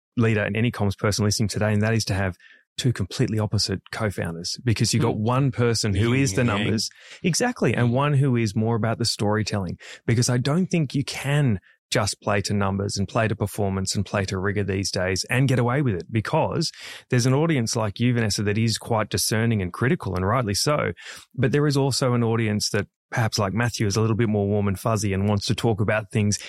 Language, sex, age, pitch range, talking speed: English, male, 20-39, 105-125 Hz, 225 wpm